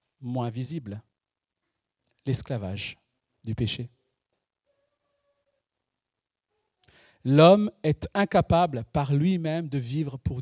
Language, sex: French, male